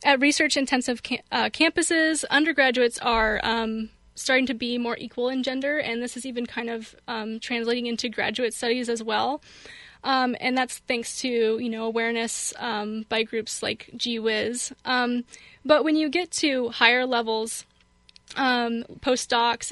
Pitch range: 235-260 Hz